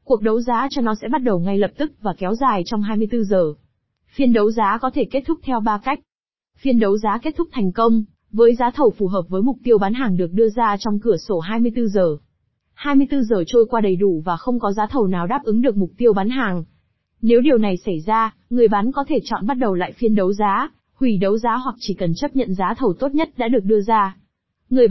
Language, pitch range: Vietnamese, 195-250 Hz